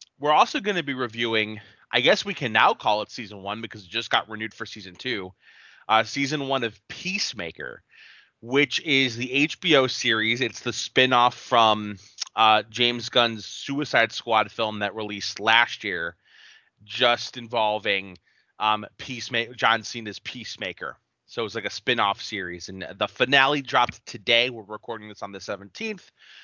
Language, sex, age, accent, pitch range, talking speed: English, male, 30-49, American, 105-140 Hz, 165 wpm